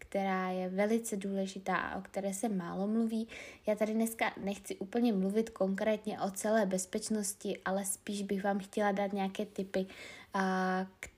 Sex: female